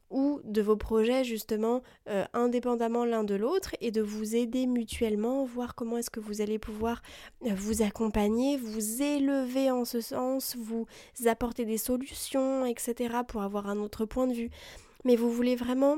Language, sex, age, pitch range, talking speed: French, female, 20-39, 220-250 Hz, 170 wpm